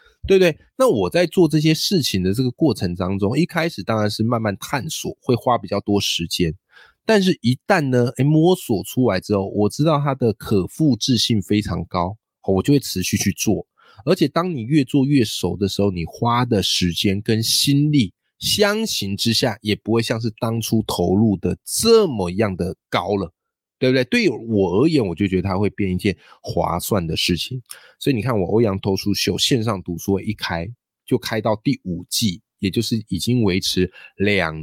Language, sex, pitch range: Chinese, male, 95-140 Hz